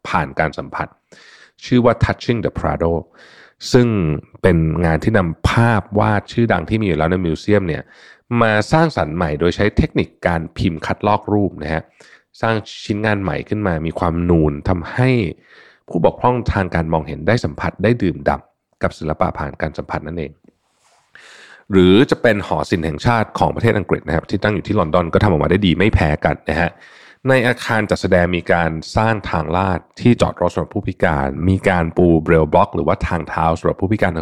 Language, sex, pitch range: Thai, male, 80-105 Hz